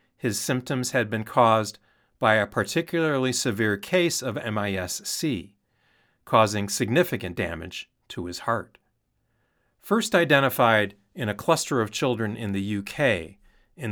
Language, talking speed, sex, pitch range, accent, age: English, 125 wpm, male, 105-135 Hz, American, 40-59